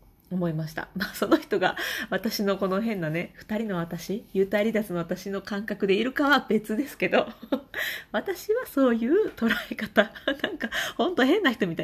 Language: Japanese